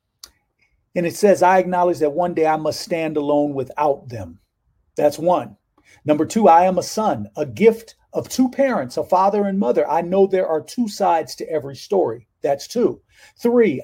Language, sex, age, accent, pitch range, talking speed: English, male, 40-59, American, 145-185 Hz, 185 wpm